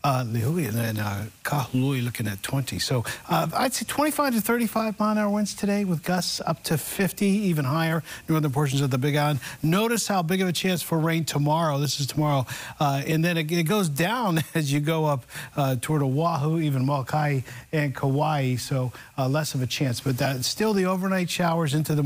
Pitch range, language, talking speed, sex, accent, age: 135-175 Hz, English, 210 wpm, male, American, 50-69